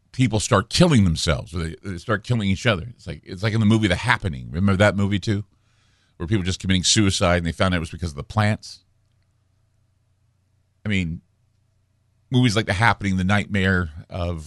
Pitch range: 95-115 Hz